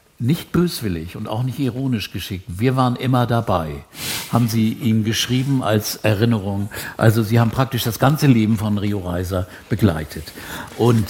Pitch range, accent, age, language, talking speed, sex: 95-125 Hz, German, 60-79, German, 155 wpm, male